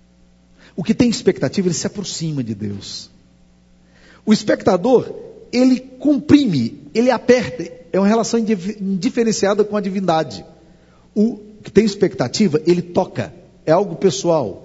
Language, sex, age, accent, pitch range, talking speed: Portuguese, male, 50-69, Brazilian, 150-225 Hz, 125 wpm